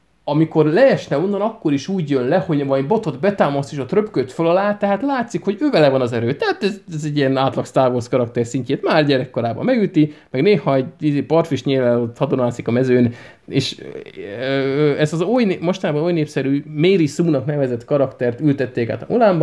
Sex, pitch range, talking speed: male, 130-170 Hz, 165 wpm